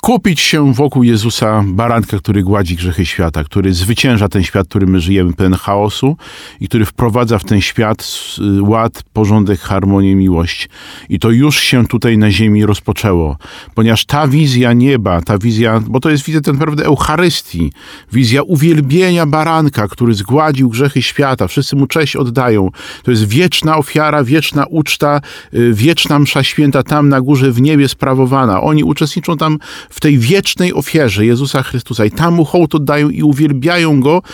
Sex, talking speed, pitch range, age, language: male, 160 wpm, 115-160 Hz, 40-59, Polish